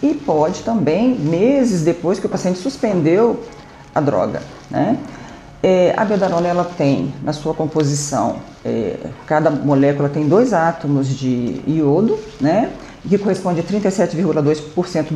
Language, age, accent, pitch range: Portuguese, 50-69, Brazilian, 150-230 Hz